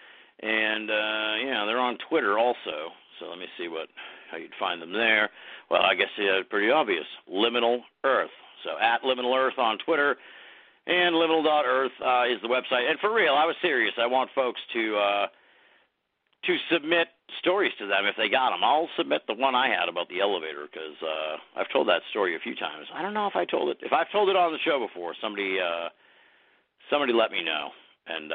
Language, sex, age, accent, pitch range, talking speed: English, male, 50-69, American, 110-165 Hz, 205 wpm